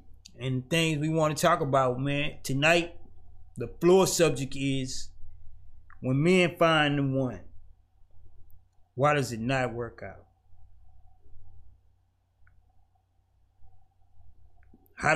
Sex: male